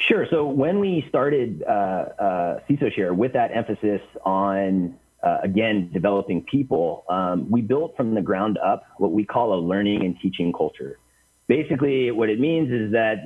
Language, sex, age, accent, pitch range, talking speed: English, male, 30-49, American, 100-125 Hz, 170 wpm